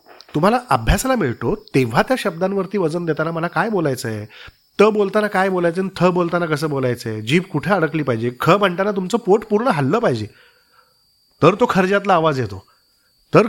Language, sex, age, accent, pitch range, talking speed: Marathi, male, 40-59, native, 145-210 Hz, 145 wpm